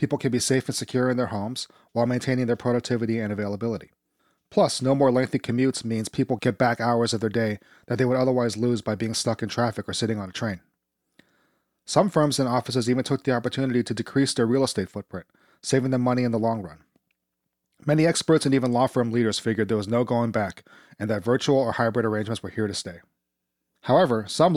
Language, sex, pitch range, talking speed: English, male, 110-130 Hz, 215 wpm